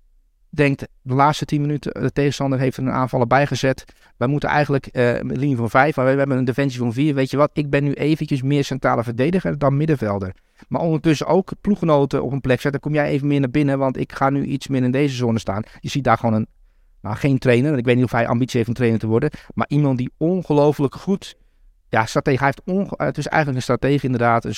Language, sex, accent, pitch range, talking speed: Dutch, male, Dutch, 110-140 Hz, 240 wpm